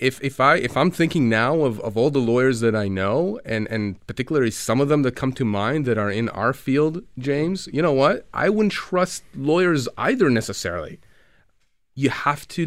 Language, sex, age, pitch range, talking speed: English, male, 30-49, 110-145 Hz, 205 wpm